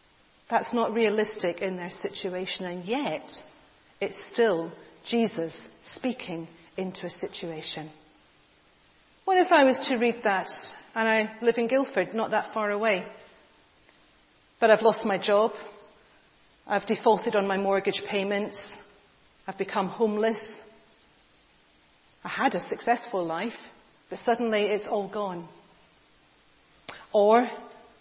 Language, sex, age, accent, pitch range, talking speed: English, female, 40-59, British, 185-225 Hz, 120 wpm